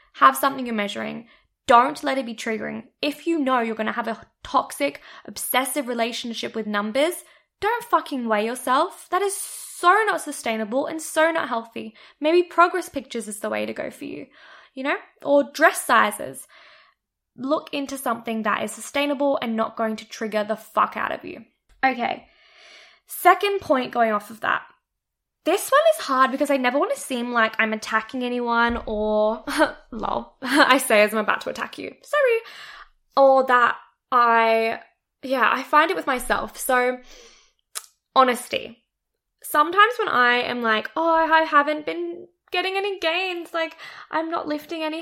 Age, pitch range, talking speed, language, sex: 20-39, 225-315 Hz, 170 wpm, English, female